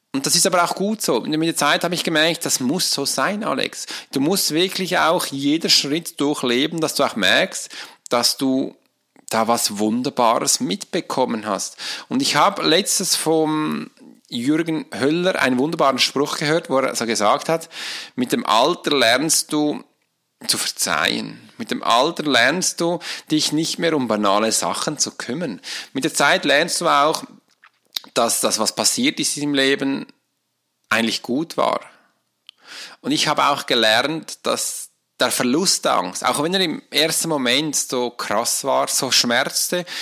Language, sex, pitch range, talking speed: German, male, 135-170 Hz, 165 wpm